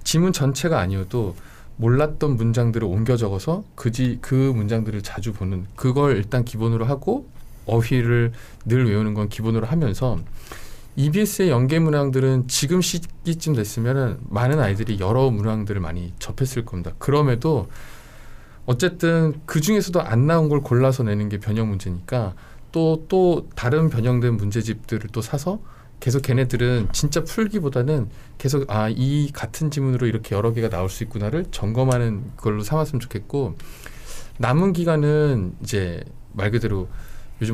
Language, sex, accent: Korean, male, native